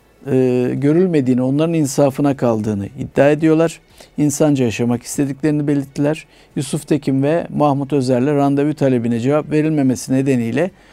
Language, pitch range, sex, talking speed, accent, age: Turkish, 120-150 Hz, male, 115 wpm, native, 50-69